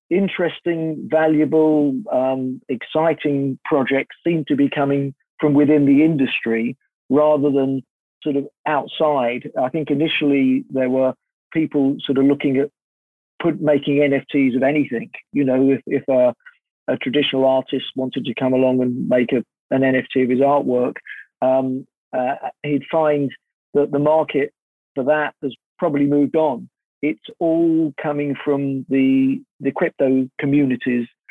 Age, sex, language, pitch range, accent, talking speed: 50-69, male, English, 130-150 Hz, British, 140 wpm